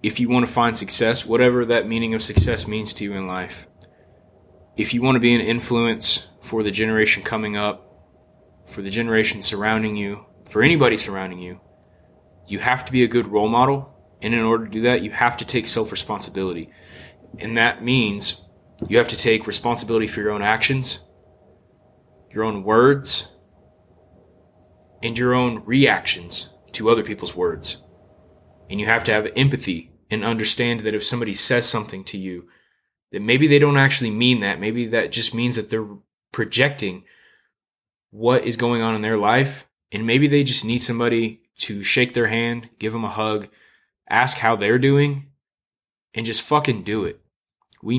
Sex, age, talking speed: male, 20-39, 175 wpm